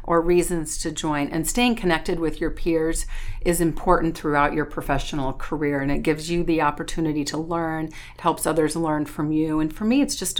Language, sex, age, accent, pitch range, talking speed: English, female, 40-59, American, 150-175 Hz, 200 wpm